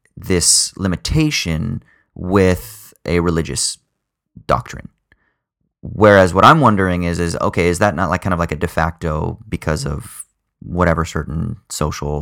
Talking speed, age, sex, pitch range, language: 135 wpm, 30-49, male, 80-110 Hz, English